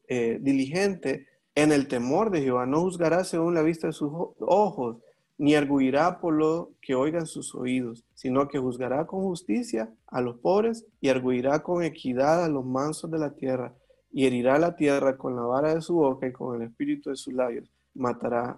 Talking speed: 190 wpm